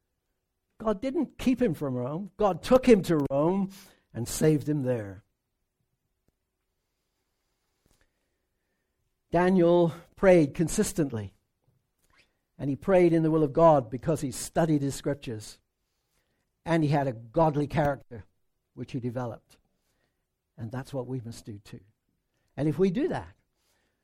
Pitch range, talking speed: 125-180 Hz, 130 wpm